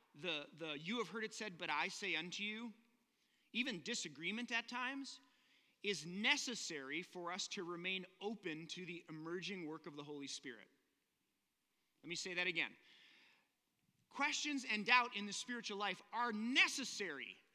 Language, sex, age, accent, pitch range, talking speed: English, male, 30-49, American, 210-325 Hz, 155 wpm